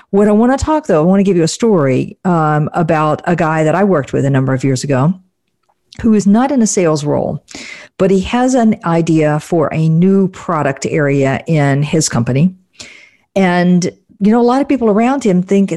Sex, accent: female, American